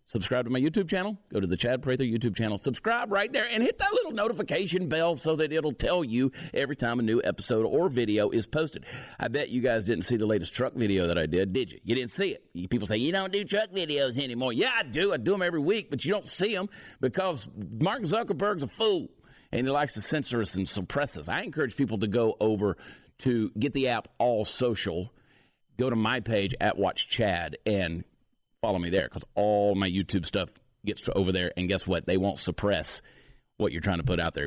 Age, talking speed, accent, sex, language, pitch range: 50-69, 230 wpm, American, male, English, 95-145 Hz